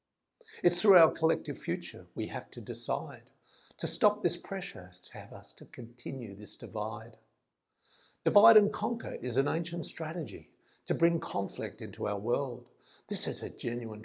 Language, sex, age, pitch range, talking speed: English, male, 50-69, 130-170 Hz, 160 wpm